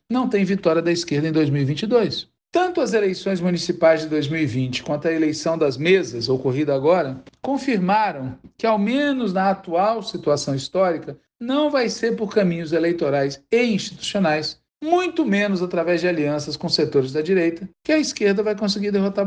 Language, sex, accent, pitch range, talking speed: Portuguese, male, Brazilian, 155-220 Hz, 160 wpm